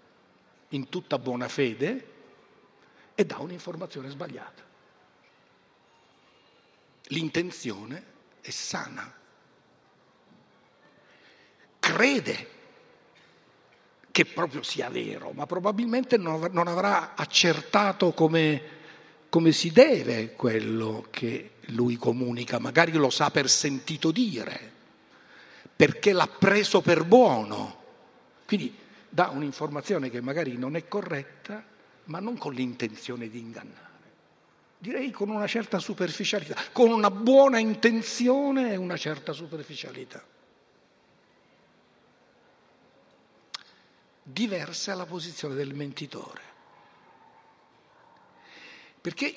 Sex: male